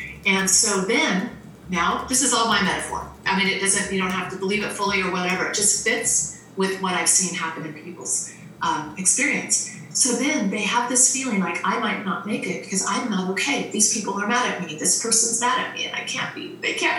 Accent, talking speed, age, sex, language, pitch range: American, 235 wpm, 30-49, female, English, 190-245 Hz